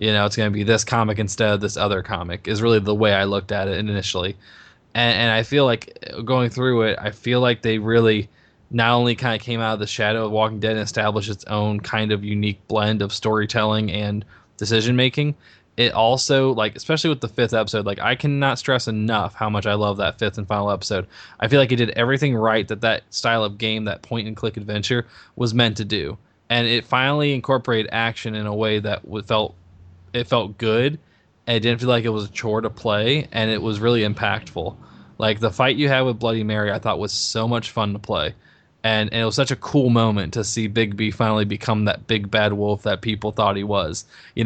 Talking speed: 230 wpm